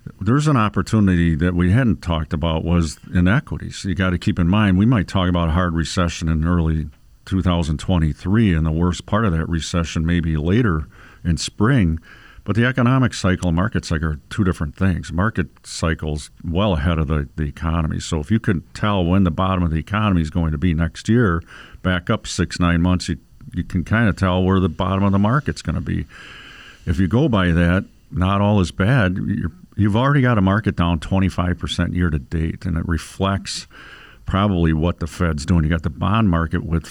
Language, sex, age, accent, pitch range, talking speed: English, male, 50-69, American, 80-100 Hz, 210 wpm